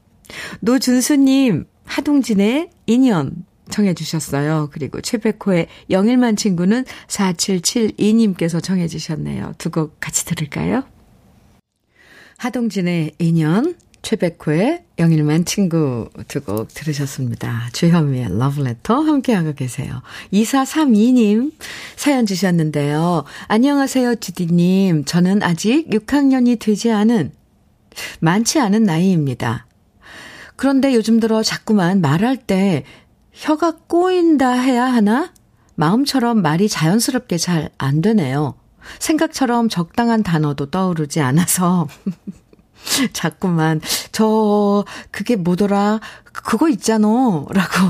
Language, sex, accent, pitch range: Korean, female, native, 160-235 Hz